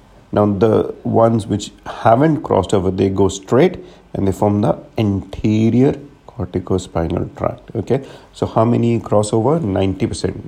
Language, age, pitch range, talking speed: English, 50-69, 95-115 Hz, 140 wpm